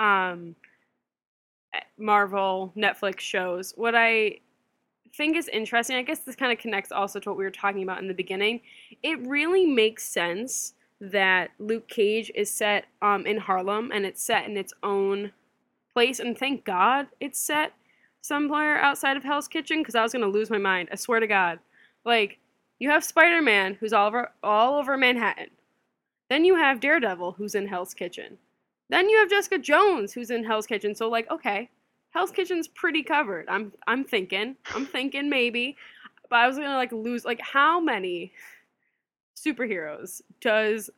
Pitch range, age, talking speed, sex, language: 200-270 Hz, 10-29, 175 wpm, female, English